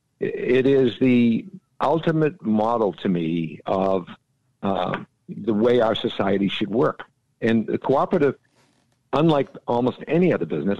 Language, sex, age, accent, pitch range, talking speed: English, male, 60-79, American, 105-135 Hz, 130 wpm